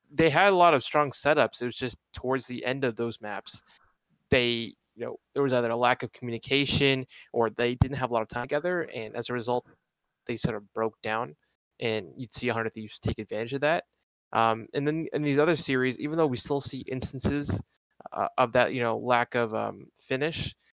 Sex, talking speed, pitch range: male, 215 wpm, 115-130 Hz